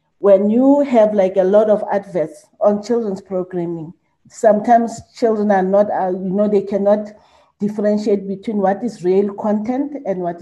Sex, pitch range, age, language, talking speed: female, 180-210 Hz, 40-59, English, 160 wpm